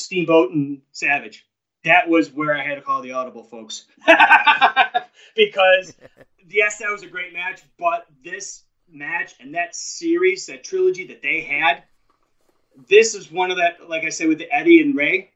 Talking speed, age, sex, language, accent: 170 wpm, 30-49, male, English, American